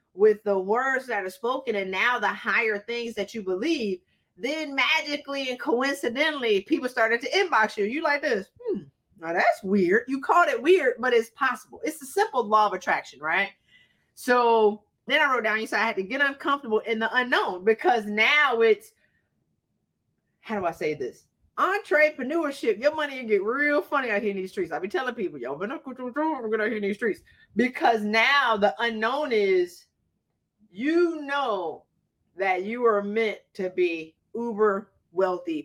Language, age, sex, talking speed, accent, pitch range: English, 30-49, female, 175 wpm, American, 195-290 Hz